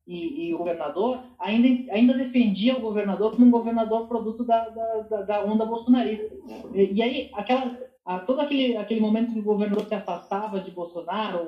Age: 40-59